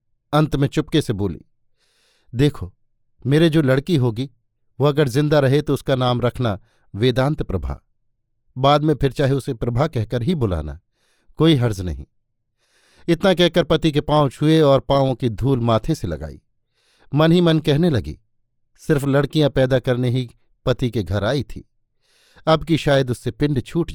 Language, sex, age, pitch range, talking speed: Hindi, male, 50-69, 115-145 Hz, 165 wpm